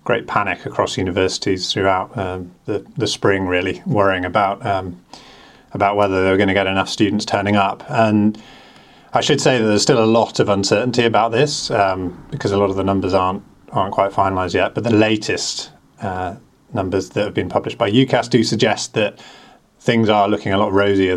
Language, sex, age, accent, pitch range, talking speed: English, male, 30-49, British, 95-110 Hz, 195 wpm